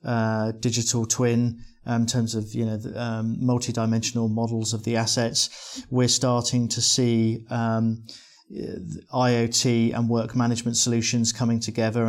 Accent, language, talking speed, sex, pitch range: British, English, 140 wpm, male, 115-125 Hz